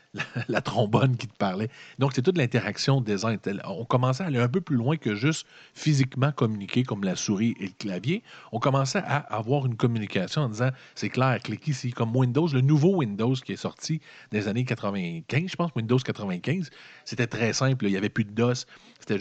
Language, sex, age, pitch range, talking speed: French, male, 40-59, 110-145 Hz, 205 wpm